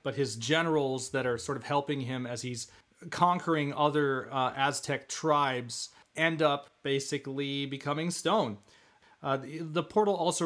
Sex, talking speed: male, 150 wpm